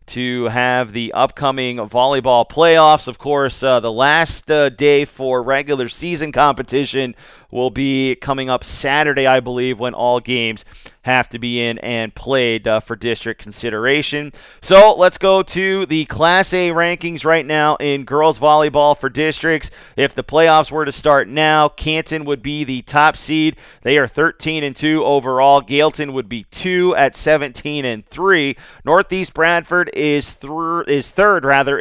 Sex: male